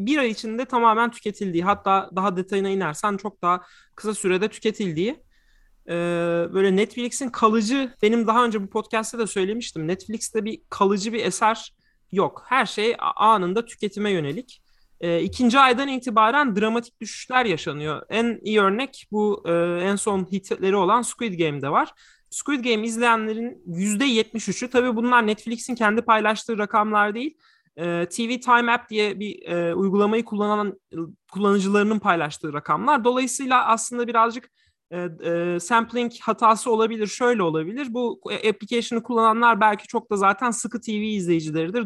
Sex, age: male, 30-49